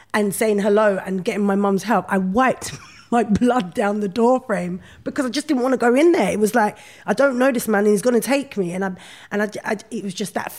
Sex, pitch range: female, 175-215 Hz